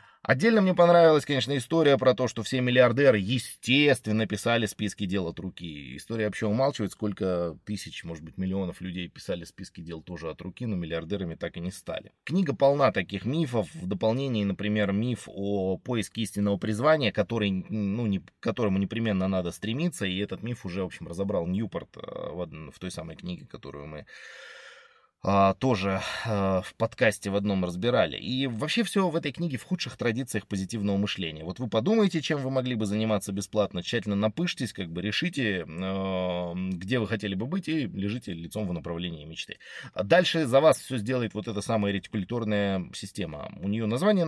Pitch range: 95-135 Hz